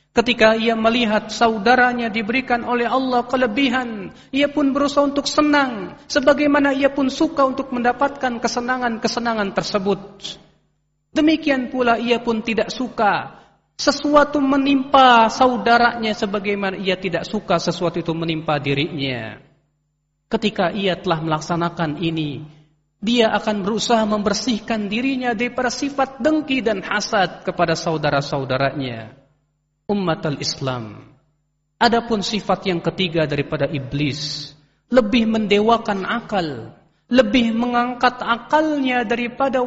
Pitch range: 160-255 Hz